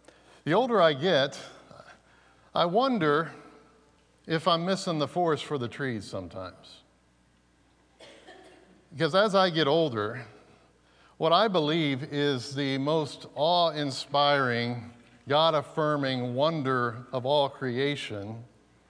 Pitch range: 120-155 Hz